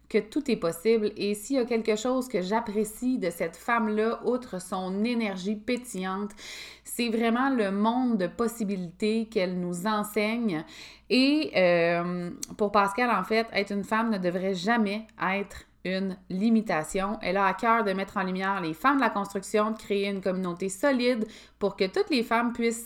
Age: 20-39